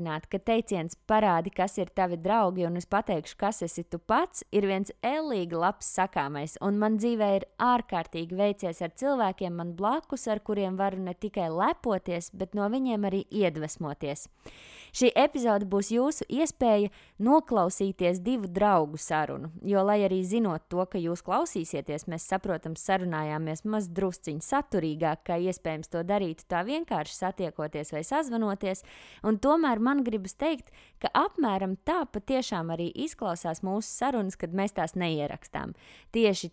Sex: female